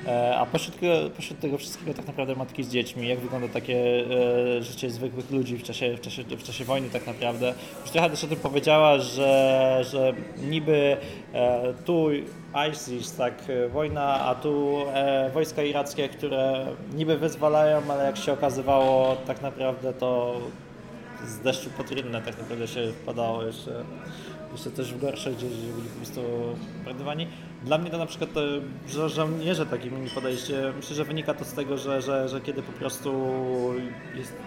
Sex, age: male, 20-39